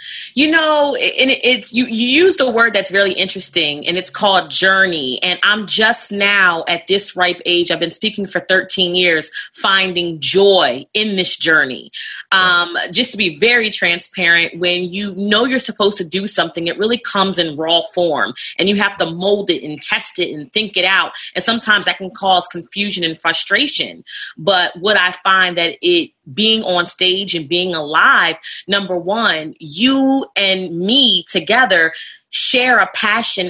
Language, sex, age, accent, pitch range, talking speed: English, female, 30-49, American, 175-215 Hz, 175 wpm